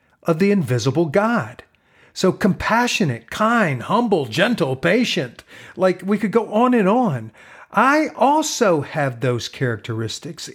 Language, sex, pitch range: English, male, 130-220 Hz